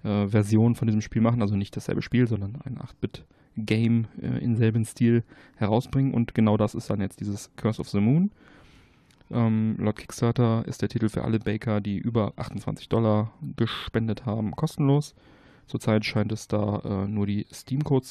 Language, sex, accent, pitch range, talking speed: German, male, German, 105-125 Hz, 175 wpm